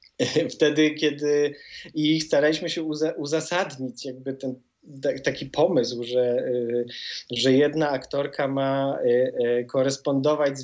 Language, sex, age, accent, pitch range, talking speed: Polish, male, 20-39, native, 130-150 Hz, 95 wpm